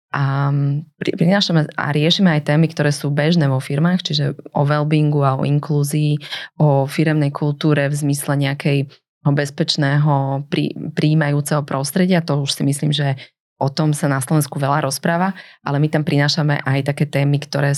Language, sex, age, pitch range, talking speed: Slovak, female, 20-39, 135-155 Hz, 150 wpm